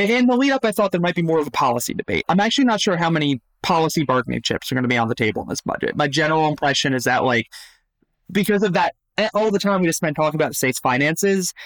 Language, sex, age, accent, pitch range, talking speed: English, male, 20-39, American, 130-165 Hz, 270 wpm